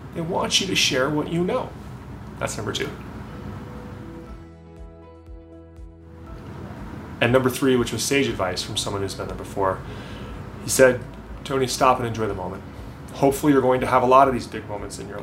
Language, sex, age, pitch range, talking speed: English, male, 30-49, 105-135 Hz, 175 wpm